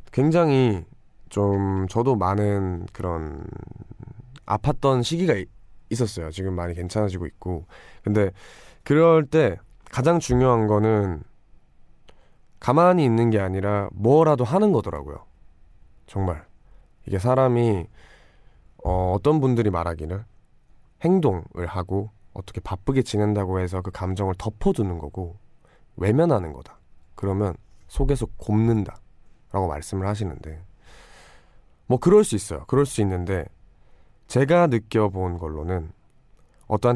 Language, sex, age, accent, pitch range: Korean, male, 20-39, native, 90-115 Hz